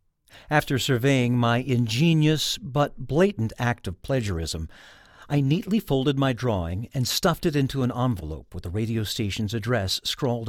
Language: English